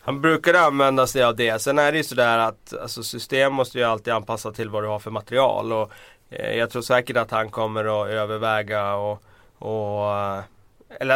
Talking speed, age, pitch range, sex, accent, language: 195 wpm, 30-49, 110-125 Hz, male, native, Swedish